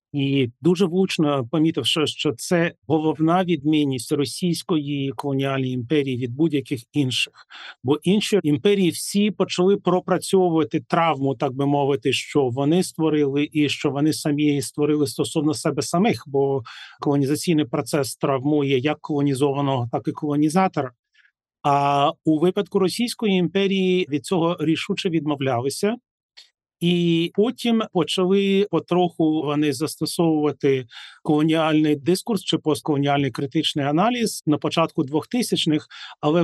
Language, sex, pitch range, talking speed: Ukrainian, male, 140-165 Hz, 115 wpm